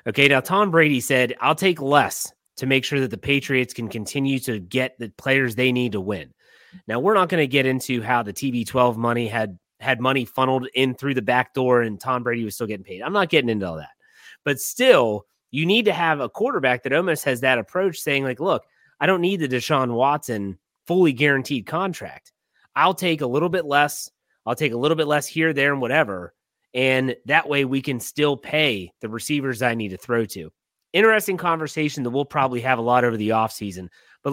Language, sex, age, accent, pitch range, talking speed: English, male, 30-49, American, 125-155 Hz, 220 wpm